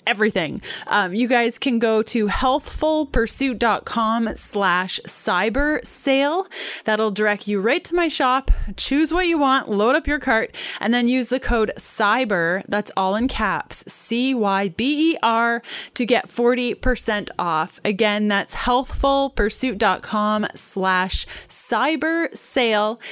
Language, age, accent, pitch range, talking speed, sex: English, 20-39, American, 205-260 Hz, 130 wpm, female